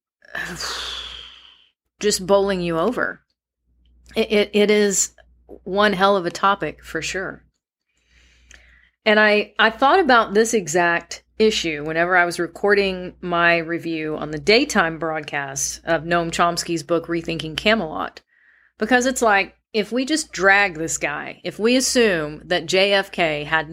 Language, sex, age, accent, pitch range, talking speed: English, female, 40-59, American, 165-215 Hz, 135 wpm